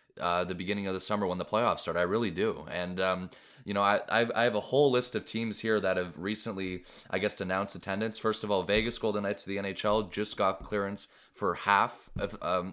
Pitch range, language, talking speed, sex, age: 95-110 Hz, English, 230 wpm, male, 20-39